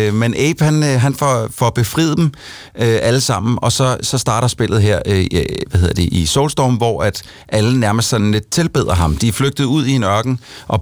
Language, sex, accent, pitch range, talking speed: Danish, male, native, 95-120 Hz, 215 wpm